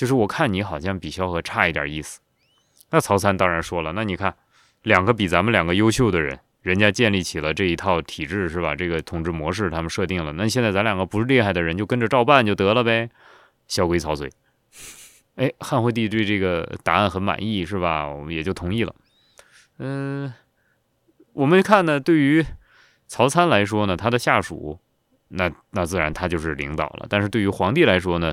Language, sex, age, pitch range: Chinese, male, 20-39, 85-120 Hz